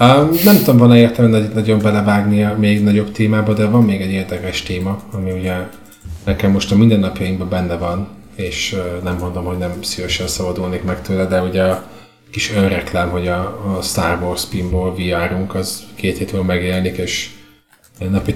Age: 30-49